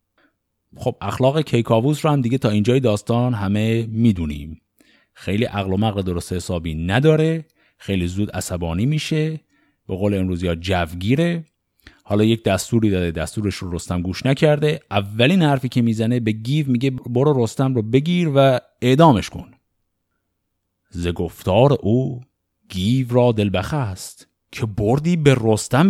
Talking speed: 140 wpm